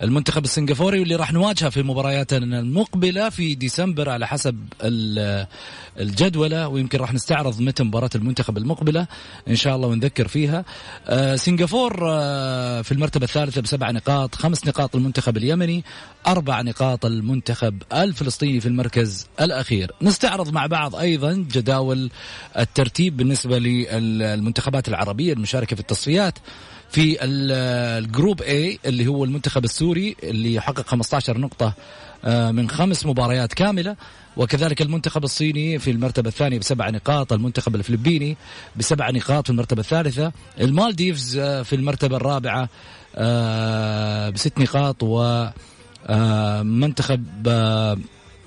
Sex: male